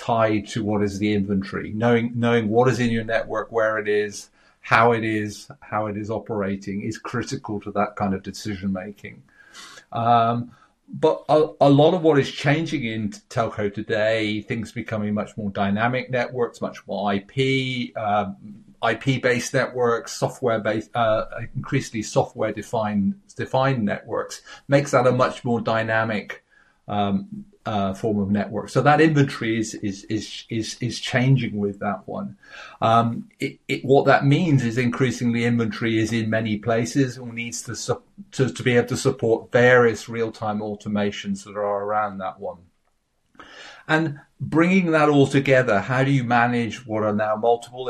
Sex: male